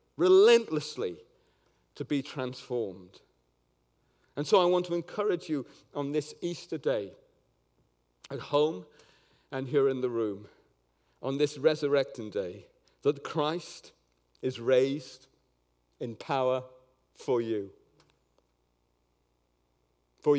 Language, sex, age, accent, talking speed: English, male, 50-69, British, 105 wpm